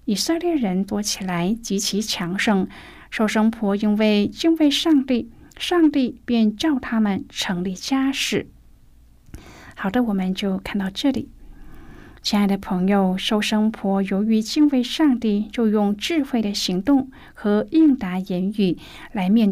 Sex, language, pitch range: female, Chinese, 190-245 Hz